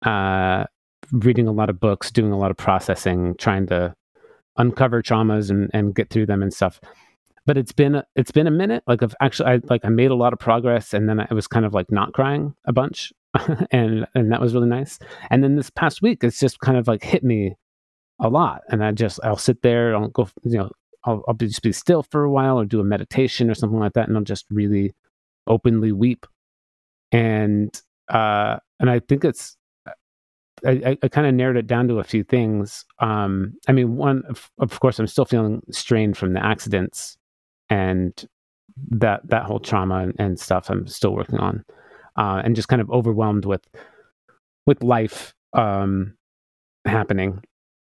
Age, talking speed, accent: 30-49, 195 wpm, American